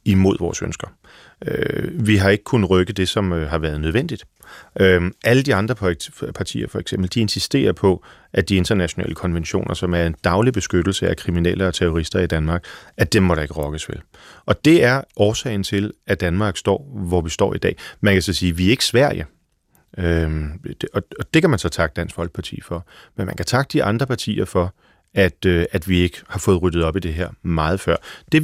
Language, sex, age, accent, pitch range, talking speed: Danish, male, 30-49, native, 85-115 Hz, 205 wpm